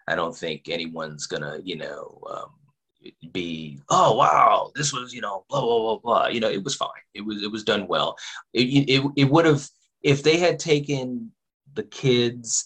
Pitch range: 95-130 Hz